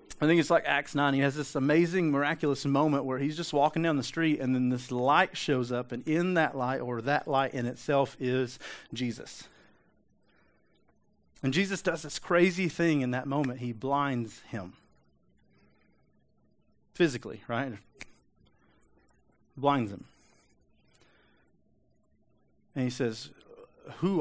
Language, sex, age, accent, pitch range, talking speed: English, male, 40-59, American, 120-150 Hz, 140 wpm